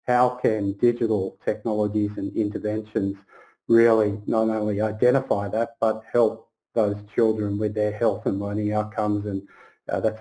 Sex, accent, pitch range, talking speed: male, Australian, 105-125 Hz, 140 wpm